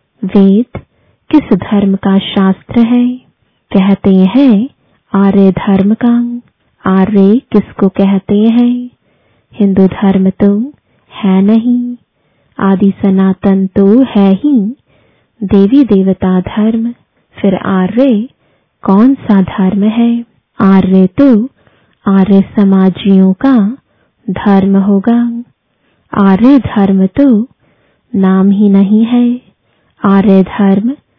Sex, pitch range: female, 195-235 Hz